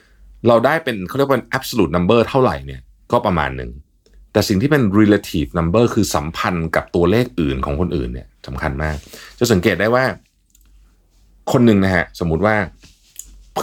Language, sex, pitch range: Thai, male, 70-105 Hz